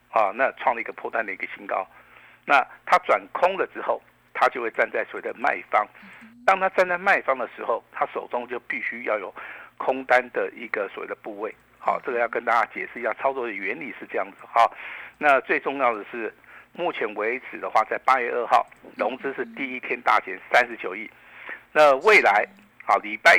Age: 50-69